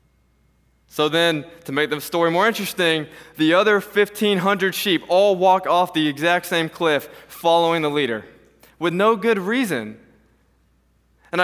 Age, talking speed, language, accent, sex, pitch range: 20-39, 140 wpm, English, American, male, 145-195 Hz